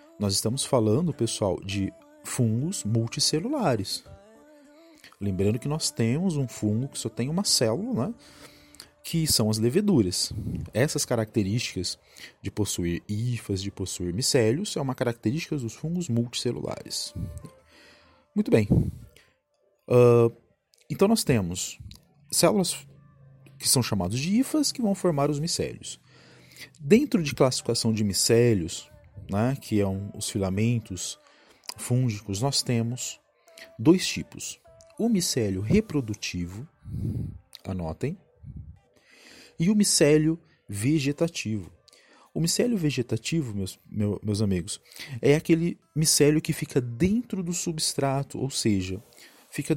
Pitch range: 105-155 Hz